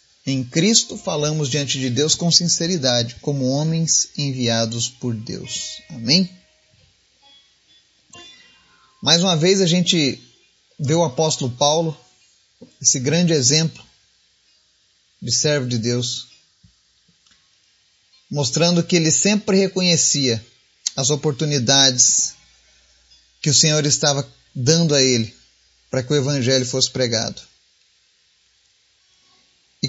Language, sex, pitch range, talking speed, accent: Portuguese, male, 130-185 Hz, 100 wpm, Brazilian